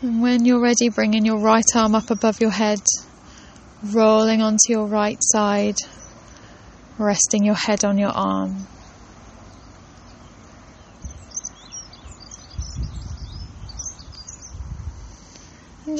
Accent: British